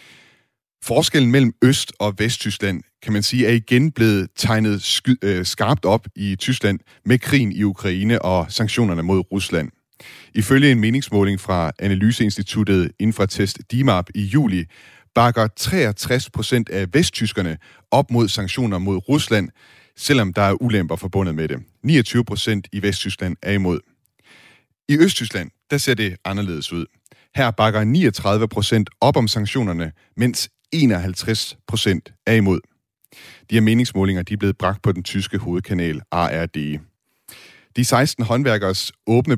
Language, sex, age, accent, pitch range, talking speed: Danish, male, 30-49, native, 95-120 Hz, 135 wpm